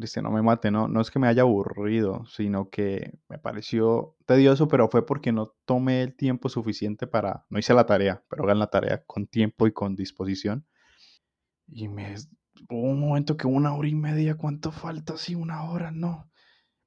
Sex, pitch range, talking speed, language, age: male, 105-135 Hz, 190 wpm, Spanish, 20-39